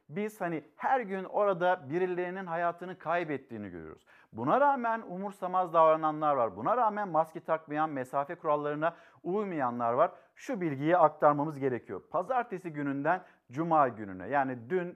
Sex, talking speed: male, 130 wpm